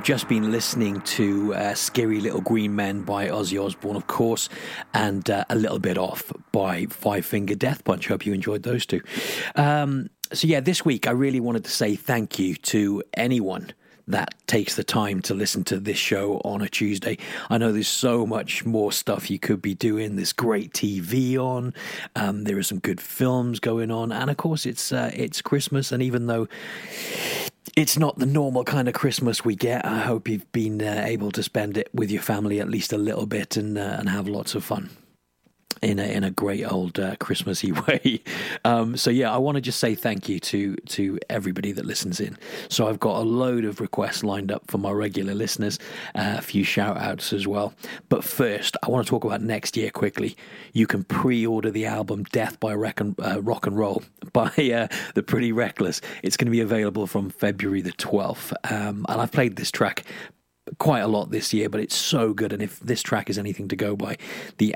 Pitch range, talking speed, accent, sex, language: 100-120 Hz, 210 wpm, British, male, English